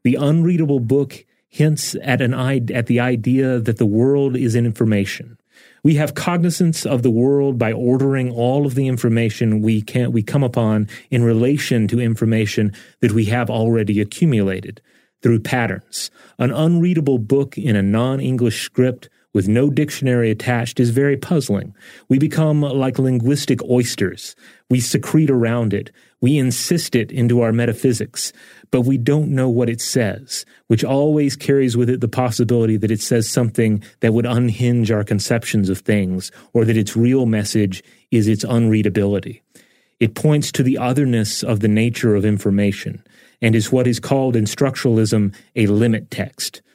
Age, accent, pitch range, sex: 30-49, American, 110-135 Hz, male